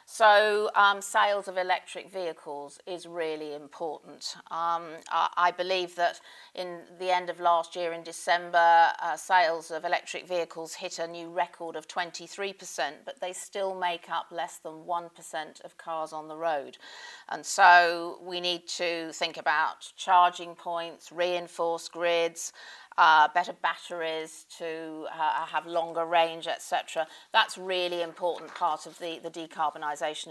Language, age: English, 40-59